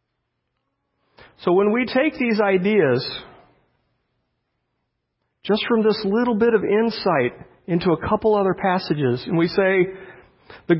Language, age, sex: English, 40-59, male